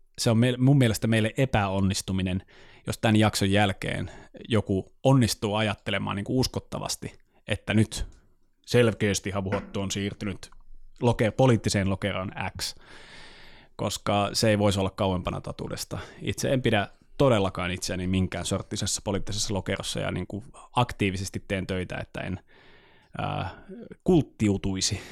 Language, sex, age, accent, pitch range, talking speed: Finnish, male, 20-39, native, 95-115 Hz, 110 wpm